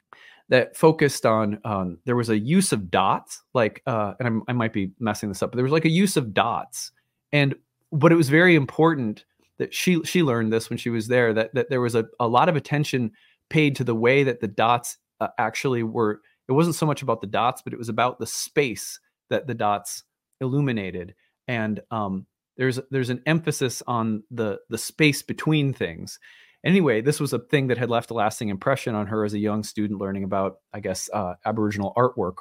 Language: English